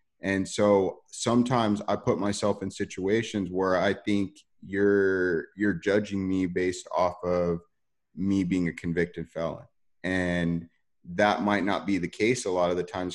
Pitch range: 90-105 Hz